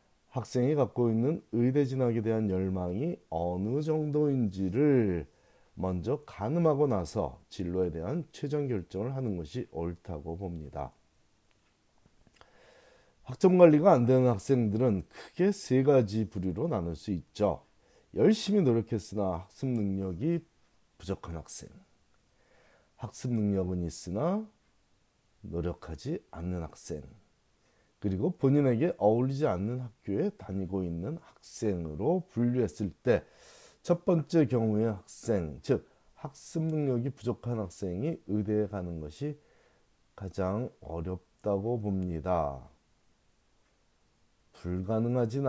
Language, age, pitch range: Korean, 40-59, 95-135 Hz